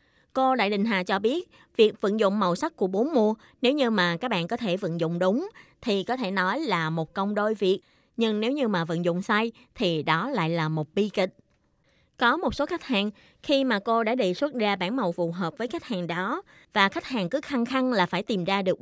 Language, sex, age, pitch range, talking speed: Vietnamese, female, 20-39, 180-245 Hz, 250 wpm